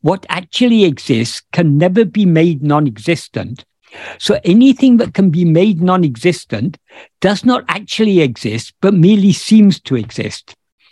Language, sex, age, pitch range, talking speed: English, male, 60-79, 150-205 Hz, 135 wpm